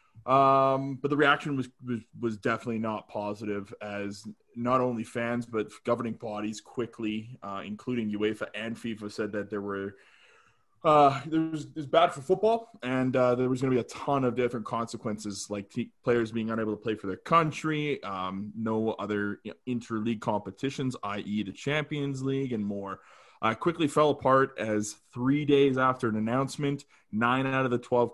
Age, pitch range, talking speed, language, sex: 20-39, 105-130 Hz, 180 wpm, English, male